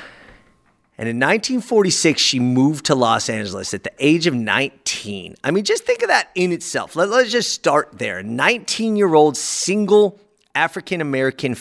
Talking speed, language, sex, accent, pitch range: 155 wpm, English, male, American, 120-190 Hz